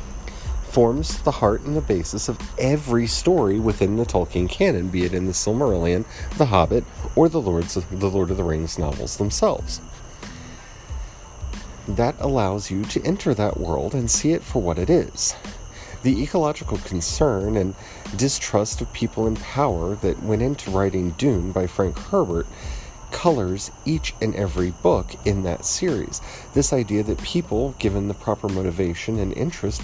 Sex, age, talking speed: male, 40-59, 155 wpm